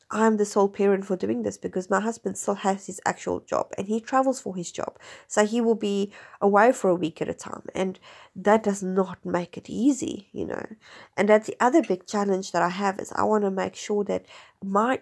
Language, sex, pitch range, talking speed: English, female, 180-210 Hz, 230 wpm